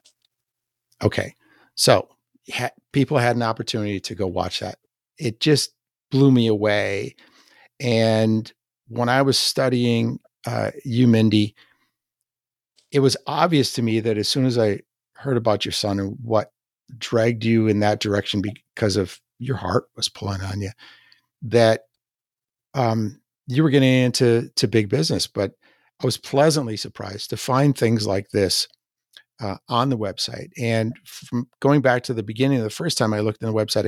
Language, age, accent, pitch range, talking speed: English, 50-69, American, 105-130 Hz, 160 wpm